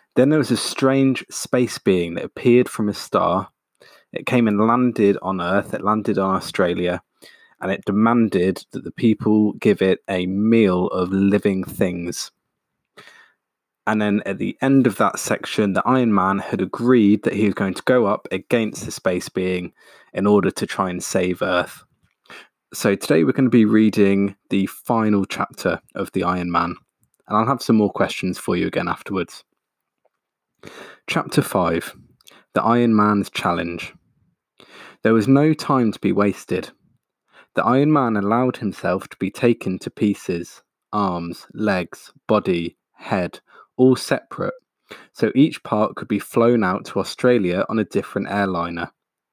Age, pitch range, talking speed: 20-39, 95-120 Hz, 160 wpm